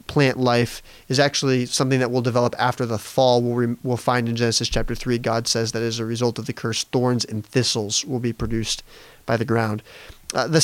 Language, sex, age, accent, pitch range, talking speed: English, male, 30-49, American, 120-135 Hz, 220 wpm